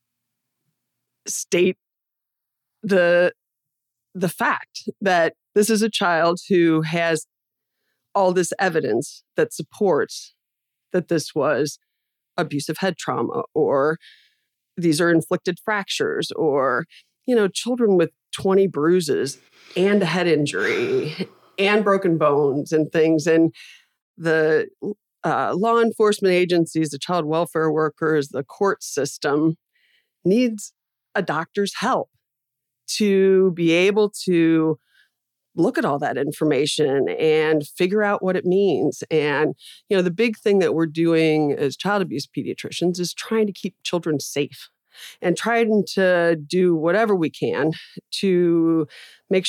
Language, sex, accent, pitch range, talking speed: English, female, American, 160-200 Hz, 125 wpm